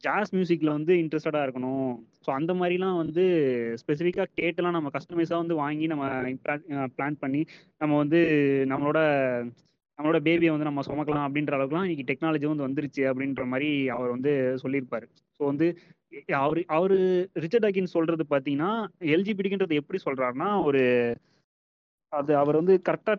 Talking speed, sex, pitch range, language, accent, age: 140 wpm, male, 135-170 Hz, Tamil, native, 20-39